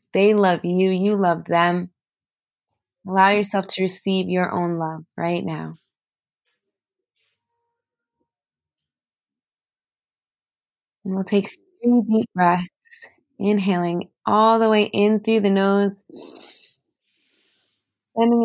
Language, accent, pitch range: English, American, 185-230 Hz